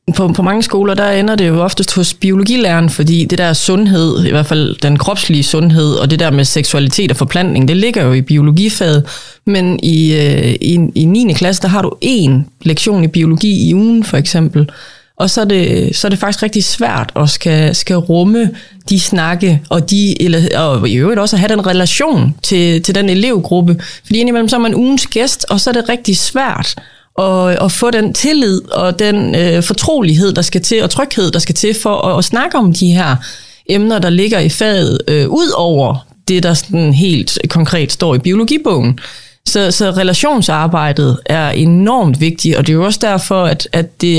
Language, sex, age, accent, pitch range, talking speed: Danish, female, 30-49, native, 160-205 Hz, 205 wpm